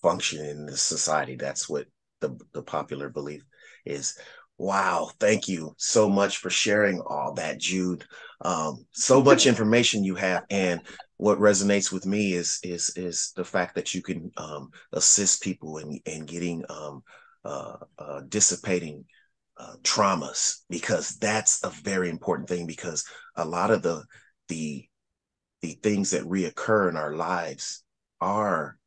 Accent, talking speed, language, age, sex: American, 150 wpm, English, 30-49, male